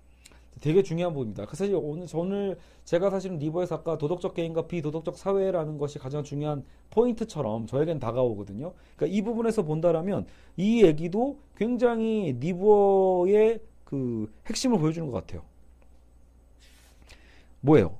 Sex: male